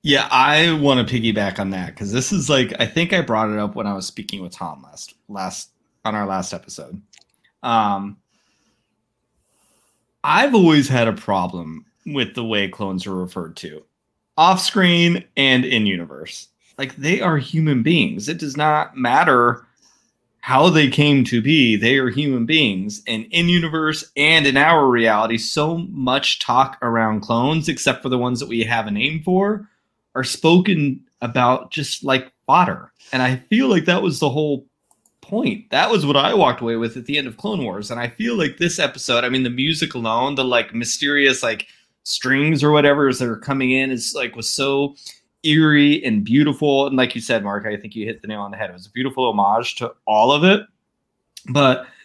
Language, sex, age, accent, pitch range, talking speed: English, male, 30-49, American, 115-155 Hz, 195 wpm